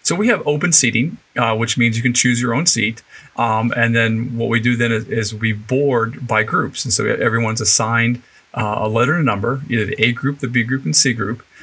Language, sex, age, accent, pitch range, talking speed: English, male, 40-59, American, 110-130 Hz, 240 wpm